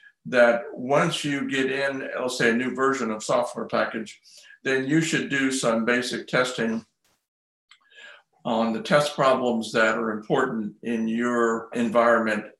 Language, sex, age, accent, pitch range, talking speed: English, male, 60-79, American, 115-145 Hz, 145 wpm